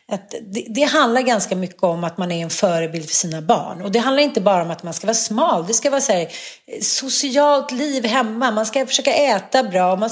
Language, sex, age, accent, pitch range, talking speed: Swedish, female, 30-49, native, 180-240 Hz, 245 wpm